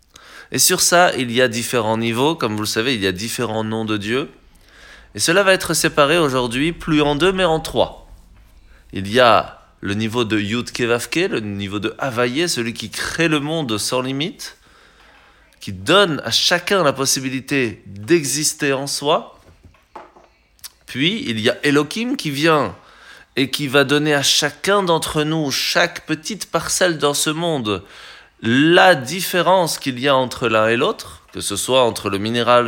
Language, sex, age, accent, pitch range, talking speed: French, male, 20-39, French, 110-155 Hz, 175 wpm